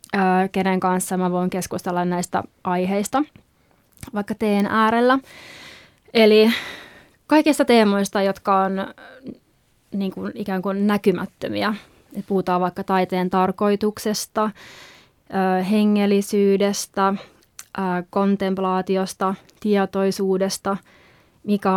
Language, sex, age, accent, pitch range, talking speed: Finnish, female, 20-39, native, 185-210 Hz, 70 wpm